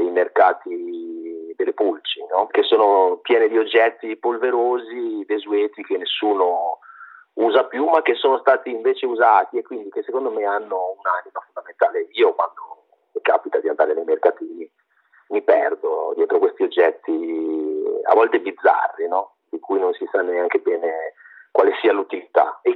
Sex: male